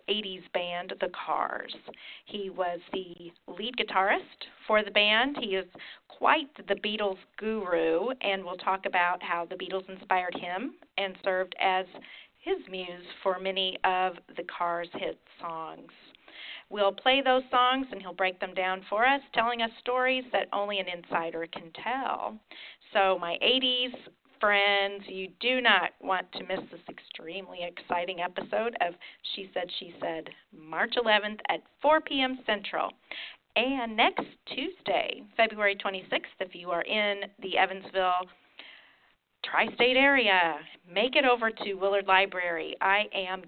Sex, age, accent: female, 40-59, American